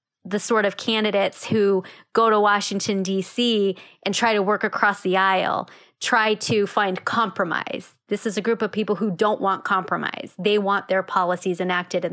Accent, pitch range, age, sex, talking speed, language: American, 190-225 Hz, 30-49, female, 180 wpm, English